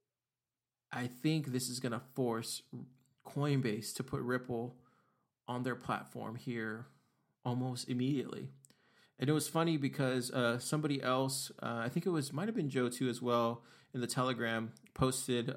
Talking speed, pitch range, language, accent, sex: 160 wpm, 120-140 Hz, English, American, male